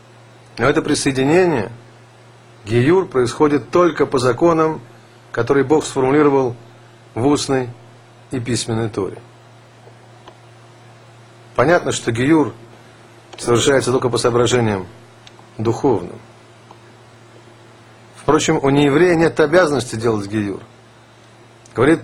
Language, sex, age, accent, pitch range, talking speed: Russian, male, 50-69, native, 115-145 Hz, 85 wpm